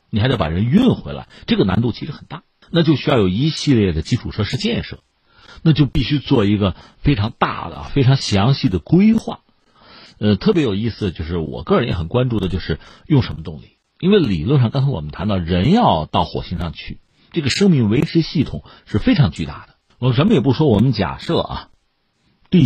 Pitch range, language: 90-140 Hz, Chinese